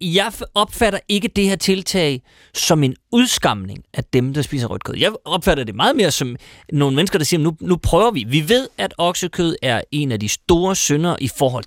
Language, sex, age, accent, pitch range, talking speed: Danish, male, 30-49, native, 120-185 Hz, 215 wpm